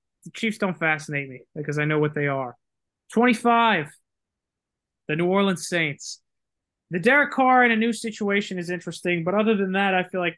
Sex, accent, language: male, American, English